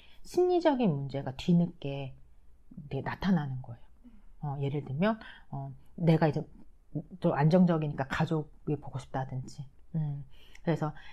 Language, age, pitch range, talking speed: English, 30-49, 145-185 Hz, 95 wpm